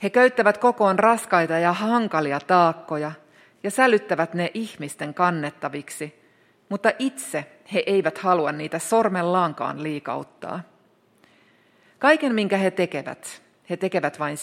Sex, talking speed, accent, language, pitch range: female, 110 wpm, native, Finnish, 155-205 Hz